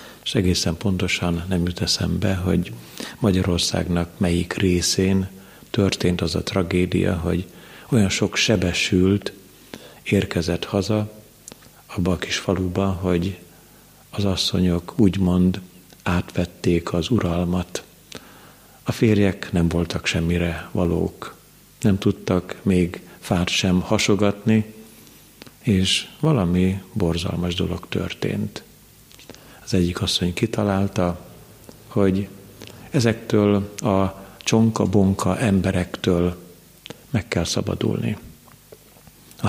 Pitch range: 90-105 Hz